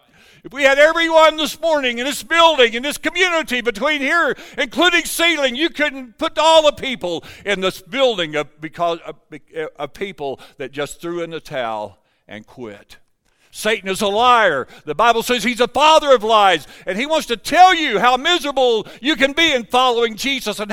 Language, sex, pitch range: English, male, 175-270 Hz